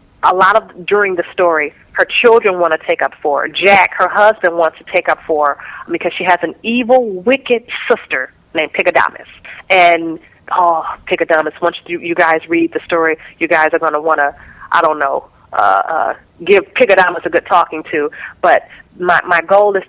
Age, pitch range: 30-49, 165-190 Hz